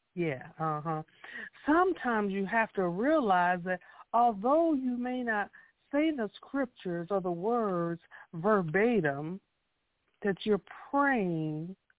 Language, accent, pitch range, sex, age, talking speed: English, American, 175-245 Hz, female, 50-69, 115 wpm